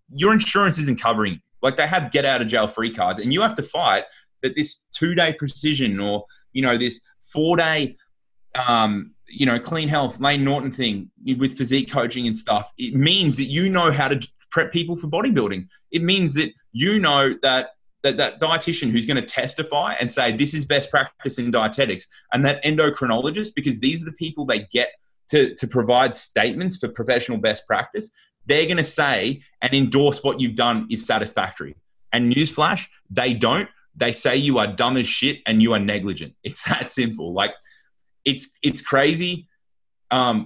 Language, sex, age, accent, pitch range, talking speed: English, male, 20-39, Australian, 115-155 Hz, 185 wpm